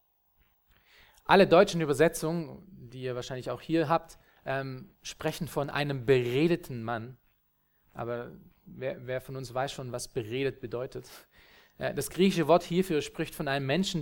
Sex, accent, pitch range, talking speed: male, German, 130-165 Hz, 145 wpm